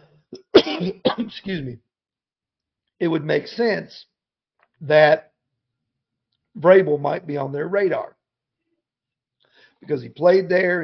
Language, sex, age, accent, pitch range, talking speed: English, male, 50-69, American, 145-190 Hz, 95 wpm